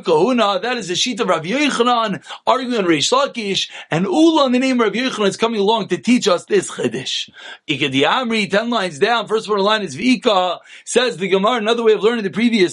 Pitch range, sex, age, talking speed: 190-250 Hz, male, 30-49, 220 wpm